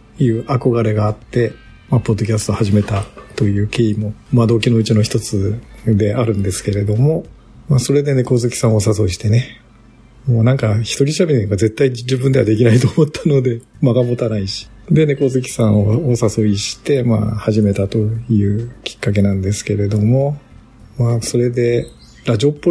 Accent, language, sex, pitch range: native, Japanese, male, 105-120 Hz